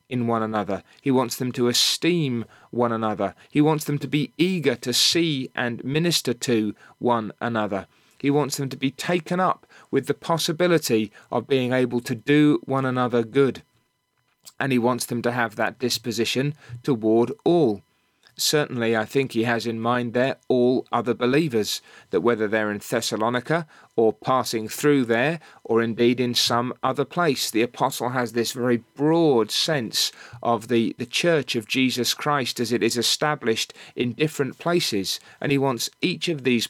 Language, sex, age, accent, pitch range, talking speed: English, male, 30-49, British, 115-145 Hz, 170 wpm